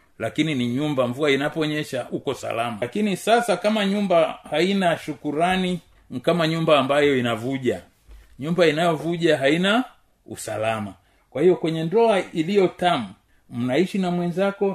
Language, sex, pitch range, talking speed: Swahili, male, 135-175 Hz, 120 wpm